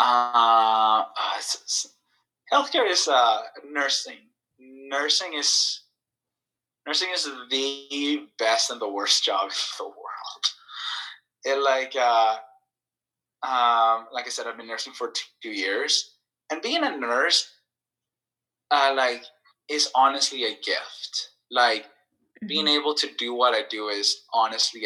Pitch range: 110-140 Hz